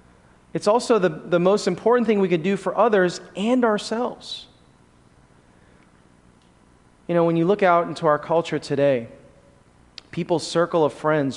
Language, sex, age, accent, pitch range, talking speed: English, male, 30-49, American, 130-185 Hz, 150 wpm